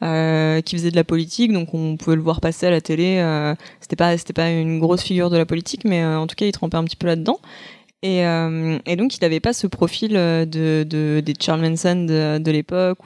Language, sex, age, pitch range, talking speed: French, female, 20-39, 160-190 Hz, 250 wpm